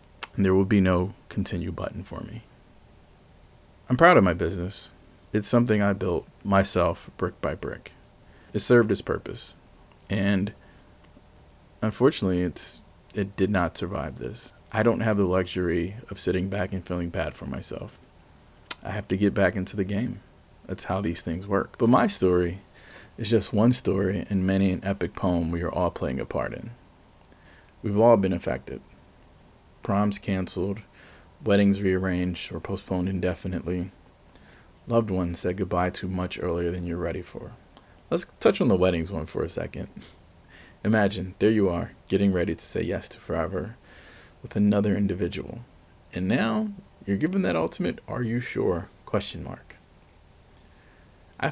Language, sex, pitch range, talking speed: English, male, 85-100 Hz, 160 wpm